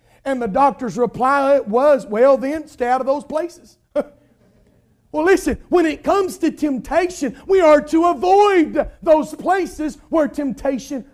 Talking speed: 145 wpm